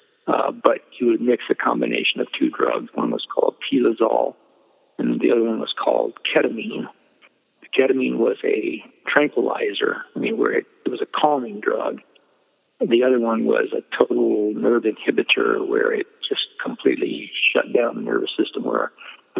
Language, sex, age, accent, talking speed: English, male, 50-69, American, 165 wpm